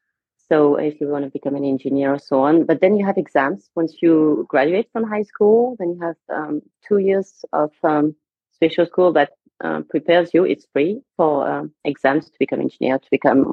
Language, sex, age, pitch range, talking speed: English, female, 30-49, 145-170 Hz, 210 wpm